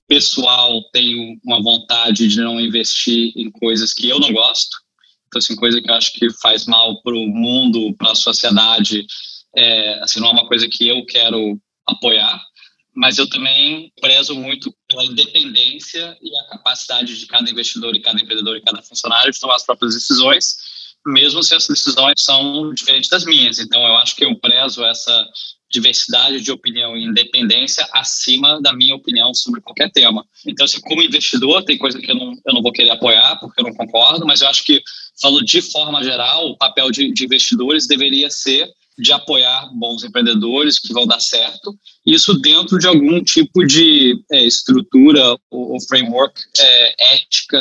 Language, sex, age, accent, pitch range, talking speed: Portuguese, male, 20-39, Brazilian, 120-165 Hz, 180 wpm